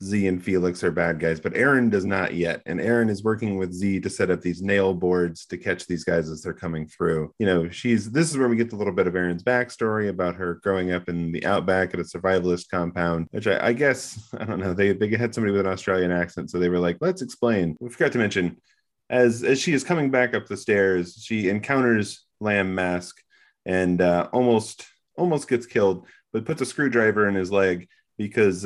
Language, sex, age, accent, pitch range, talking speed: English, male, 30-49, American, 90-115 Hz, 225 wpm